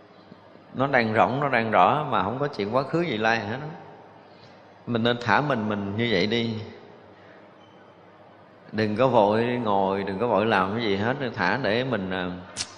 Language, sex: Vietnamese, male